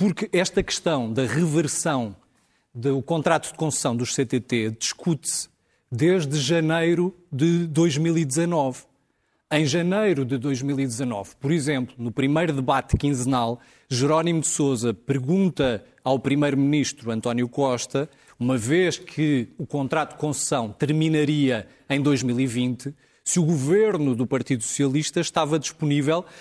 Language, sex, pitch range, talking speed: Portuguese, male, 135-170 Hz, 120 wpm